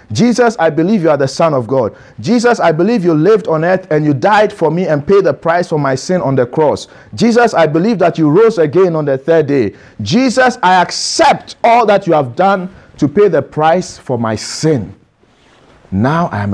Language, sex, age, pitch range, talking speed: English, male, 50-69, 120-170 Hz, 220 wpm